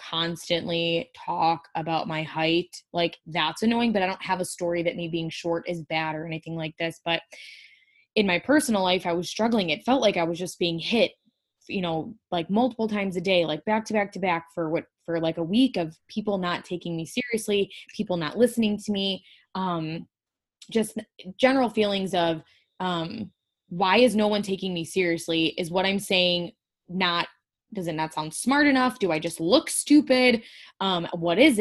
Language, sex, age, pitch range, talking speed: English, female, 20-39, 170-225 Hz, 195 wpm